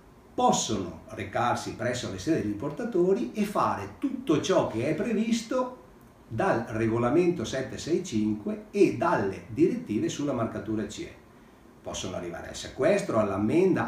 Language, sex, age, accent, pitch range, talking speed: Italian, male, 50-69, native, 110-165 Hz, 120 wpm